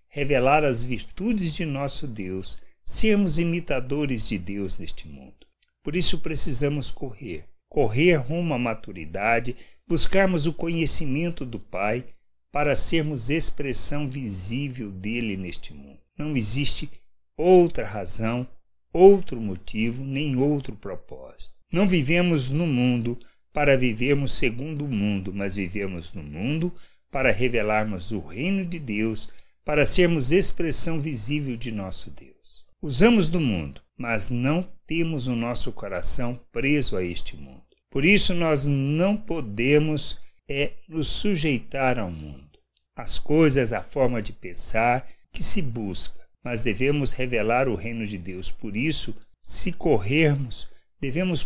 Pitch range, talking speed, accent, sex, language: 110-155 Hz, 130 wpm, Brazilian, male, Portuguese